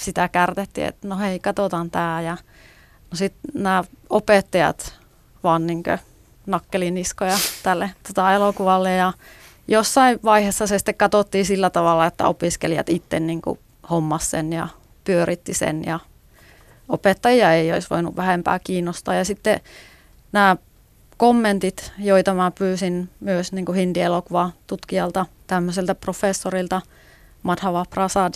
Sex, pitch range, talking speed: female, 175-195 Hz, 120 wpm